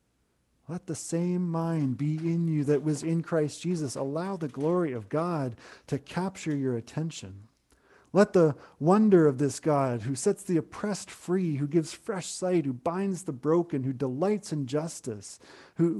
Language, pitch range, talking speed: English, 130-170 Hz, 170 wpm